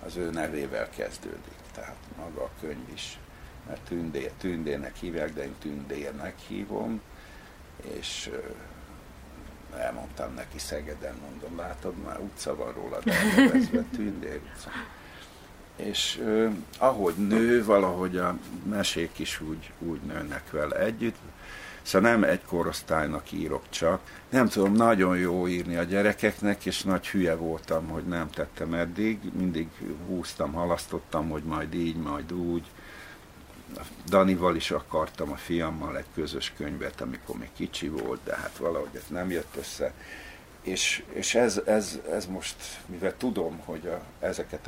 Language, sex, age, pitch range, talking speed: Hungarian, male, 60-79, 80-100 Hz, 135 wpm